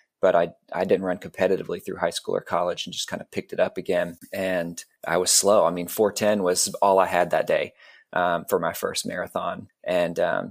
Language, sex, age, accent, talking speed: English, male, 20-39, American, 225 wpm